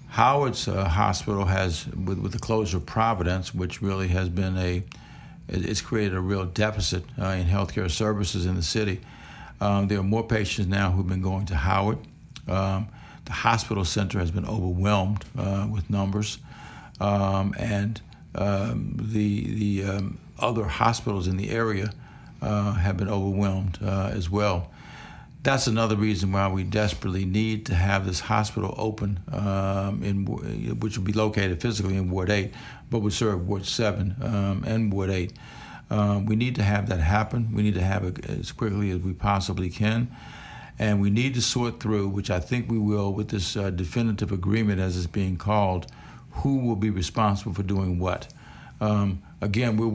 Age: 60-79